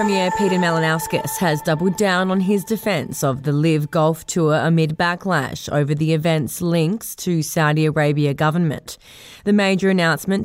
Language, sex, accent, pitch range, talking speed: English, female, Australian, 155-190 Hz, 155 wpm